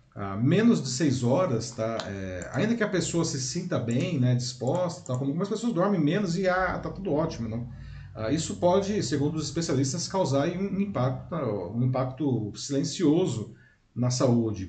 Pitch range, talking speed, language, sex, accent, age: 120-160 Hz, 175 wpm, Portuguese, male, Brazilian, 40-59